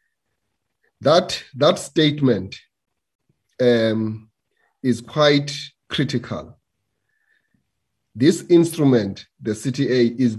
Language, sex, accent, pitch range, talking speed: English, male, South African, 115-145 Hz, 70 wpm